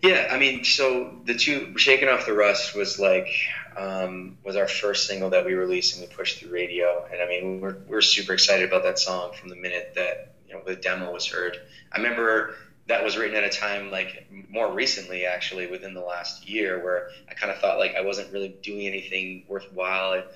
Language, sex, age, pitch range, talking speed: English, male, 20-39, 95-105 Hz, 220 wpm